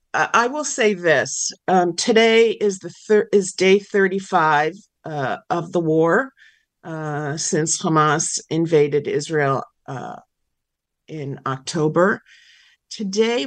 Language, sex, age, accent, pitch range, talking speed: English, female, 50-69, American, 165-215 Hz, 110 wpm